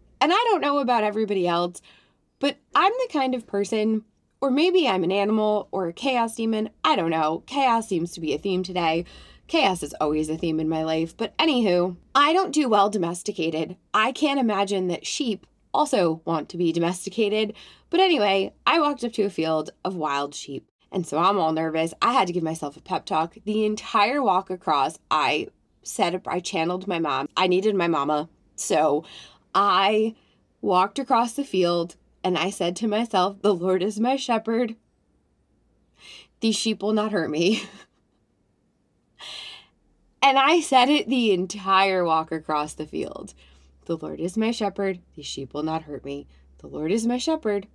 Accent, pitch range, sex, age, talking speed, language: American, 165-225 Hz, female, 20-39, 180 wpm, English